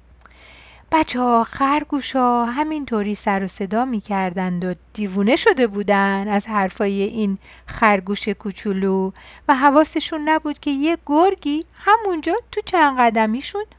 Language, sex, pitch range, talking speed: Persian, female, 205-295 Hz, 120 wpm